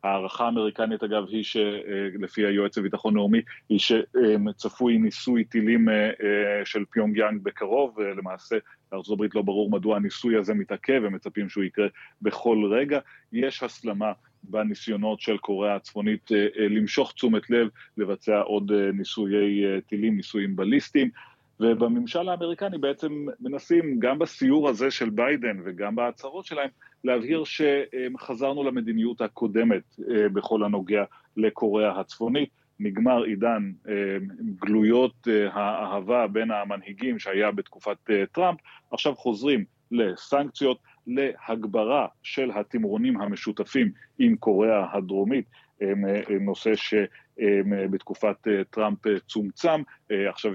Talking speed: 105 wpm